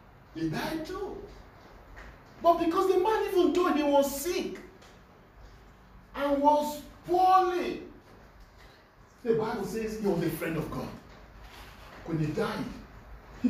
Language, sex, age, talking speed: English, male, 40-59, 125 wpm